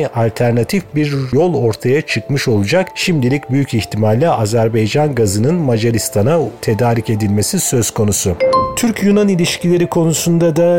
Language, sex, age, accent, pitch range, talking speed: Turkish, male, 40-59, native, 115-145 Hz, 110 wpm